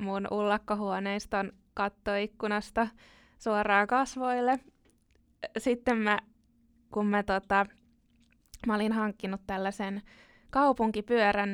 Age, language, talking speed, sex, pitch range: 20-39, Finnish, 80 wpm, female, 190-225 Hz